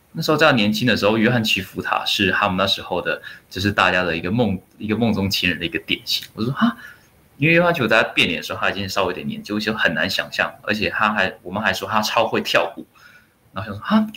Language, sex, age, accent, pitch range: Chinese, male, 20-39, native, 95-115 Hz